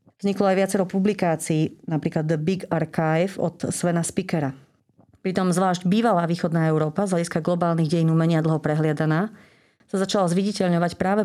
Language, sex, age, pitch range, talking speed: Slovak, female, 40-59, 165-205 Hz, 145 wpm